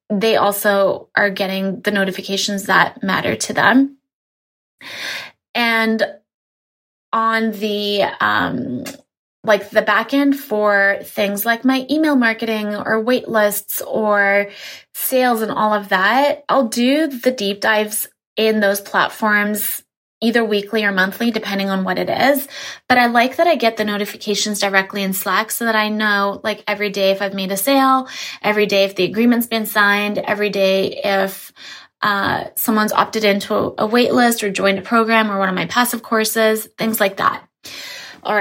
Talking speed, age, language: 160 wpm, 20-39, English